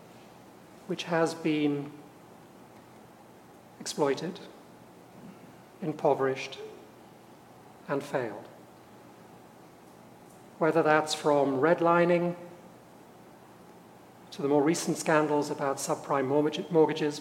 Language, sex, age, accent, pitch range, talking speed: English, male, 40-59, British, 145-175 Hz, 65 wpm